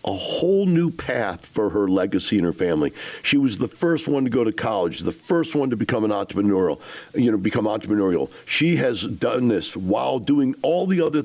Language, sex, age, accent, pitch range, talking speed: English, male, 50-69, American, 105-150 Hz, 210 wpm